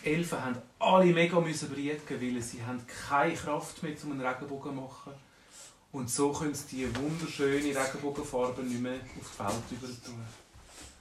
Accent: Austrian